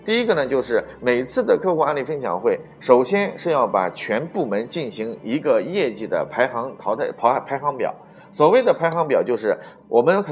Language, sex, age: Chinese, male, 30-49